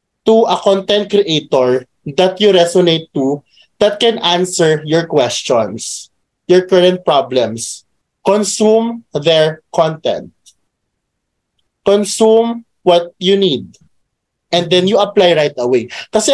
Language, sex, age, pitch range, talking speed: Filipino, male, 20-39, 165-220 Hz, 110 wpm